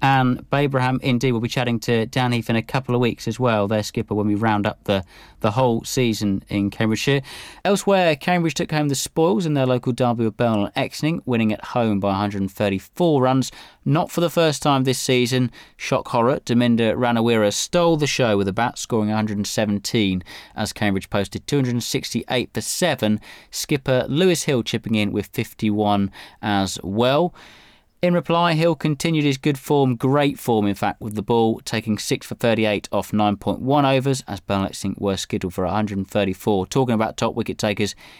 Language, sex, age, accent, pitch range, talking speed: English, male, 30-49, British, 105-135 Hz, 185 wpm